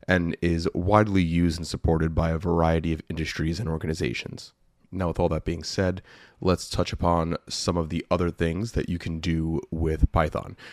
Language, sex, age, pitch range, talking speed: English, male, 30-49, 80-90 Hz, 185 wpm